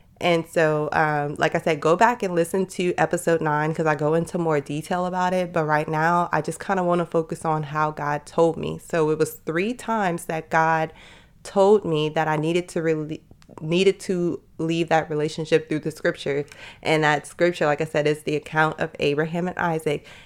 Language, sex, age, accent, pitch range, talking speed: English, female, 20-39, American, 155-180 Hz, 210 wpm